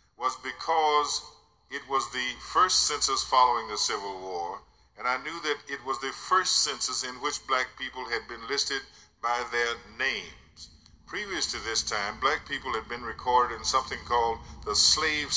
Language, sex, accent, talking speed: English, male, American, 170 wpm